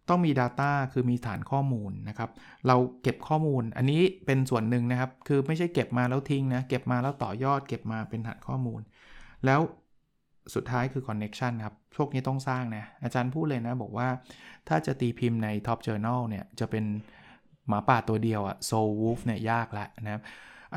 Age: 20-39